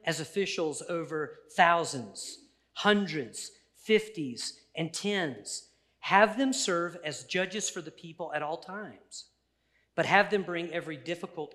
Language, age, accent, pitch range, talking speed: English, 50-69, American, 160-210 Hz, 130 wpm